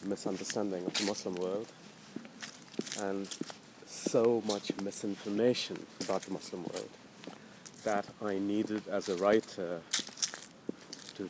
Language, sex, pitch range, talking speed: English, male, 100-125 Hz, 105 wpm